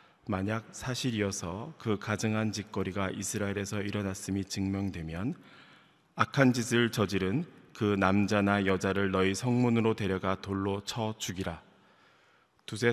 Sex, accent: male, native